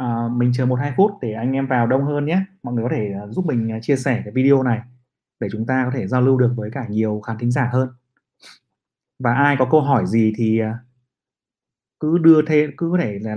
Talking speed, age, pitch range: 245 wpm, 20-39, 115-140 Hz